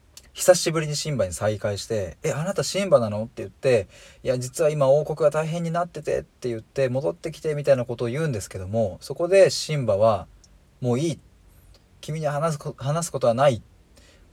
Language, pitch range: Japanese, 95-145 Hz